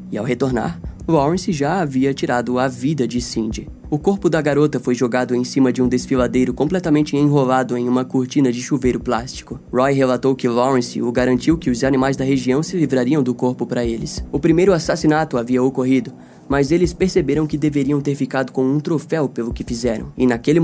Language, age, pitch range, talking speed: Portuguese, 20-39, 125-150 Hz, 195 wpm